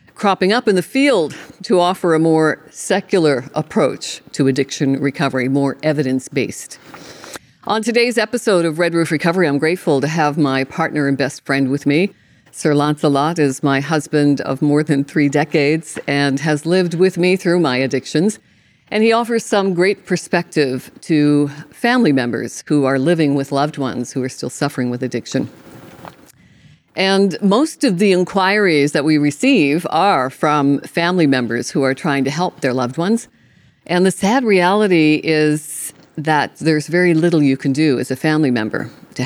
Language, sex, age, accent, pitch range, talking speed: English, female, 50-69, American, 140-180 Hz, 170 wpm